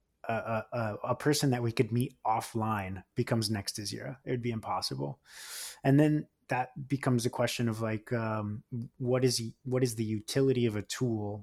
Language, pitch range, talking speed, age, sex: English, 105-125 Hz, 185 wpm, 20-39, male